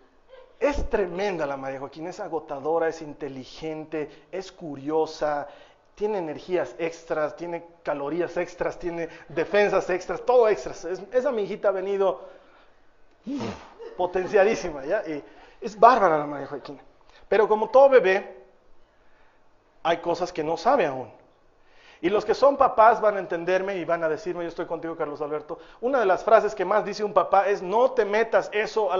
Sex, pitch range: male, 170-240 Hz